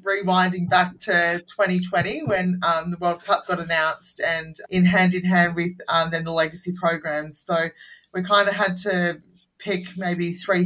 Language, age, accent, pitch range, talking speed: English, 20-39, Australian, 165-185 Hz, 175 wpm